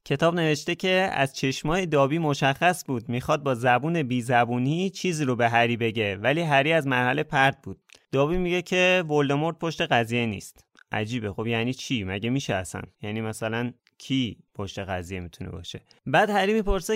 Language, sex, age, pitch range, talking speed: Persian, male, 20-39, 115-150 Hz, 165 wpm